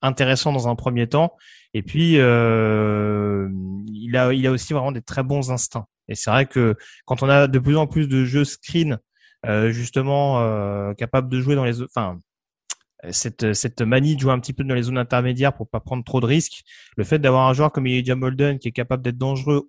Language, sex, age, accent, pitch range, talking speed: French, male, 30-49, French, 115-145 Hz, 220 wpm